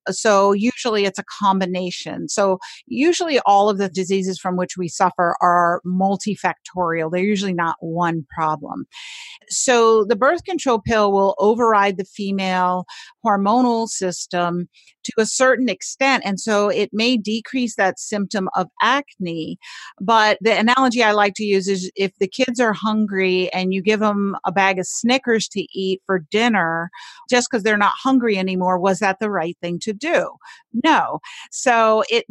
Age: 50-69